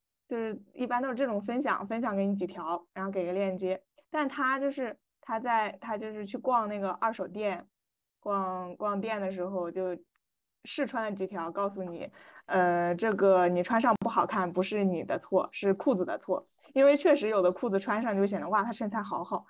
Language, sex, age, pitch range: Chinese, female, 20-39, 185-245 Hz